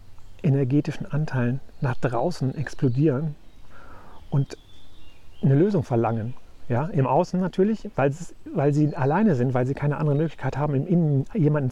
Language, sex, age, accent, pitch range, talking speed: German, male, 40-59, German, 130-155 Hz, 135 wpm